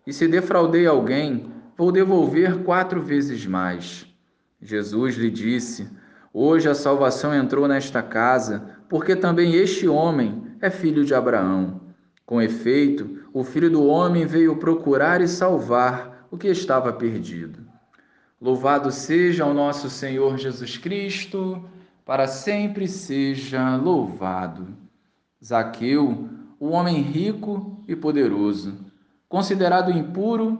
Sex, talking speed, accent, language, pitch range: male, 115 wpm, Brazilian, Portuguese, 120-170 Hz